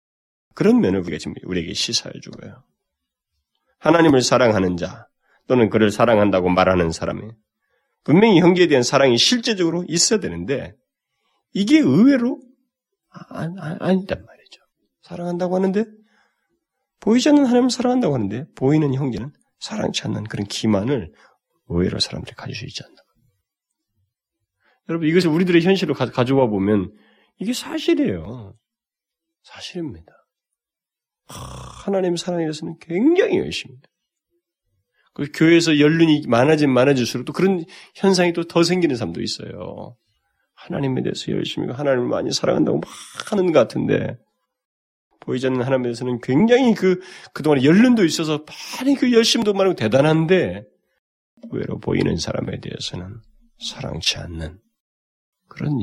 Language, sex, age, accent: Korean, male, 30-49, native